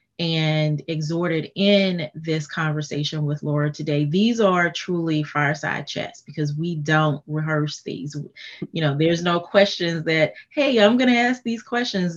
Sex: female